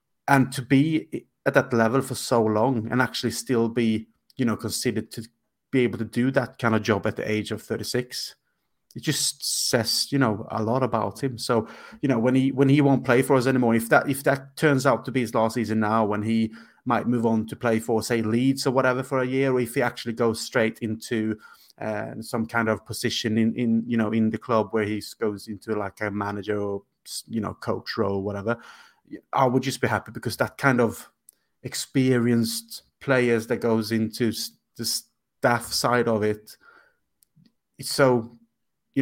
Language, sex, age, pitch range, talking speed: English, male, 30-49, 110-125 Hz, 205 wpm